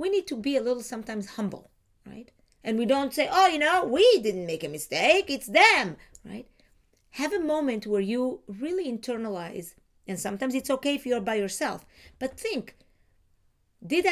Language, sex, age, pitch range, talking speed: English, female, 40-59, 210-310 Hz, 180 wpm